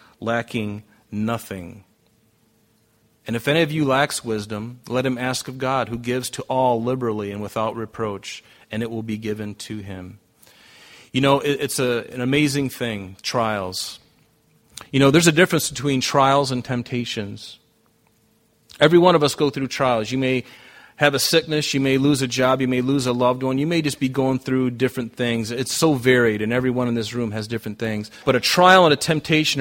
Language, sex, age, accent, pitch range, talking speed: English, male, 40-59, American, 115-140 Hz, 190 wpm